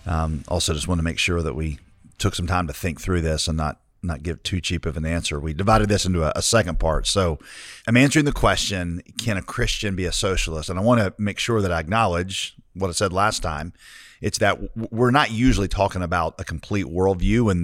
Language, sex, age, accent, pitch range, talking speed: English, male, 40-59, American, 85-105 Hz, 235 wpm